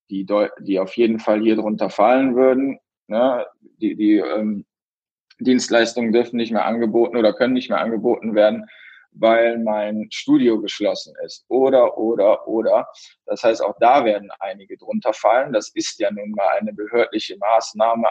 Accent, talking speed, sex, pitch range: German, 155 wpm, male, 110-155 Hz